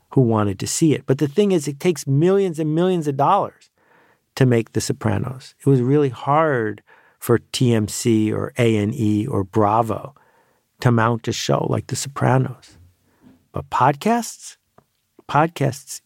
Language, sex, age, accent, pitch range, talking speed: English, male, 50-69, American, 110-145 Hz, 155 wpm